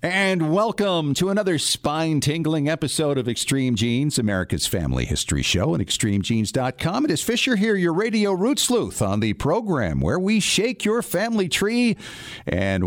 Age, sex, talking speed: 50-69, male, 155 wpm